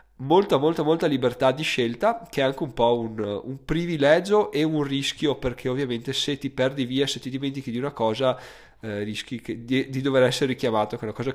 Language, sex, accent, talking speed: Italian, male, native, 215 wpm